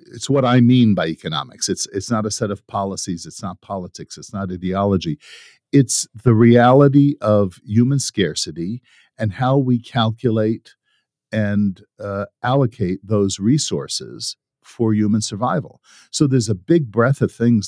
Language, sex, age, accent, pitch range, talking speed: English, male, 50-69, American, 100-130 Hz, 150 wpm